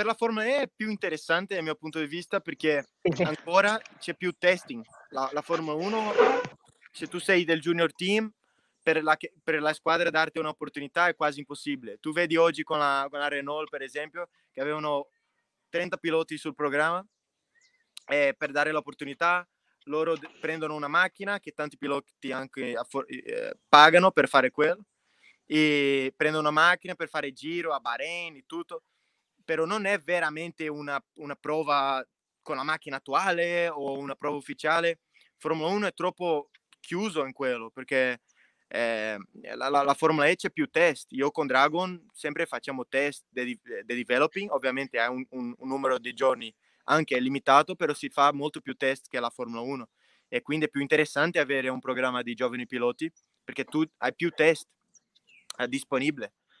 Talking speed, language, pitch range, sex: 165 wpm, Italian, 140-175 Hz, male